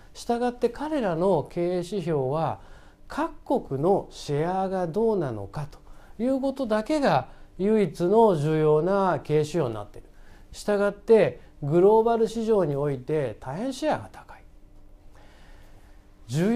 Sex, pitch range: male, 130-205 Hz